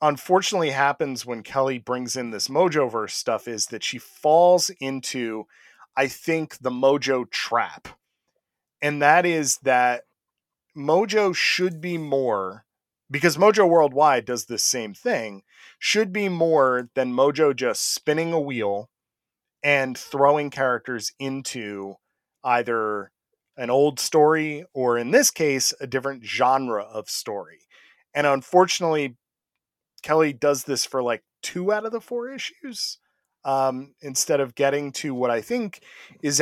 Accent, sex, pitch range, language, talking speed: American, male, 125-160 Hz, English, 135 wpm